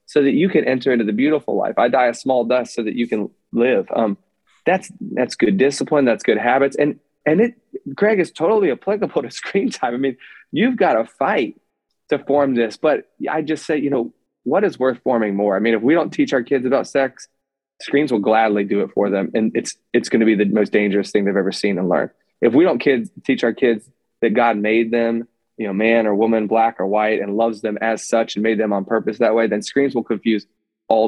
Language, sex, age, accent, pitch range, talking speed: English, male, 20-39, American, 115-150 Hz, 240 wpm